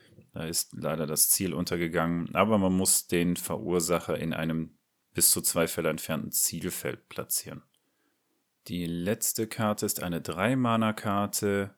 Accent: German